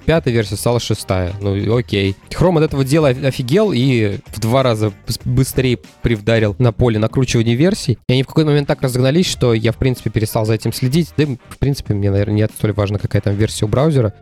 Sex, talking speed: male, 210 wpm